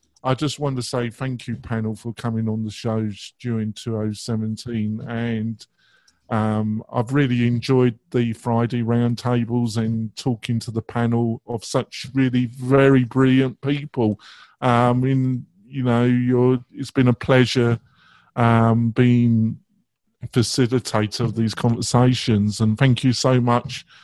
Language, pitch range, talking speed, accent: English, 115-130 Hz, 135 wpm, British